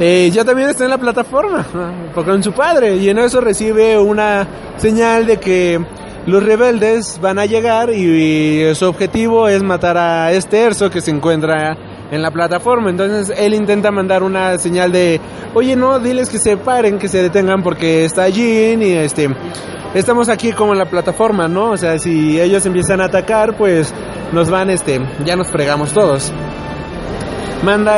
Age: 30-49